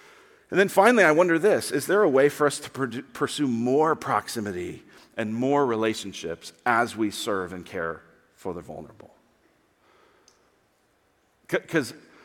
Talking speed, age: 135 wpm, 40-59